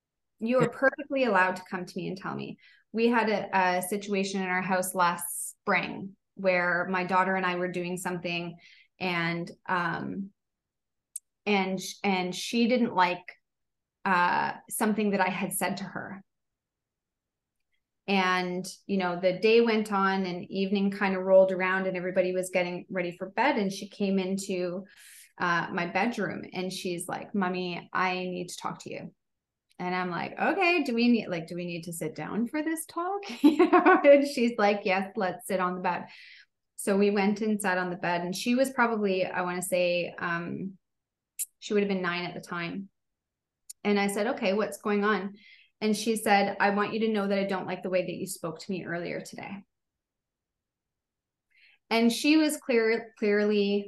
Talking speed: 185 wpm